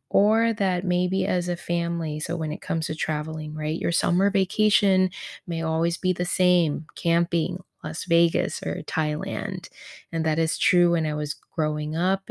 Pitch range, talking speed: 155-180 Hz, 170 wpm